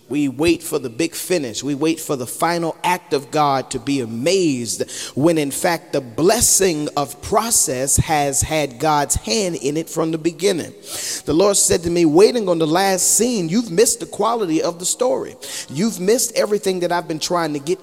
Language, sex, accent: English, male, American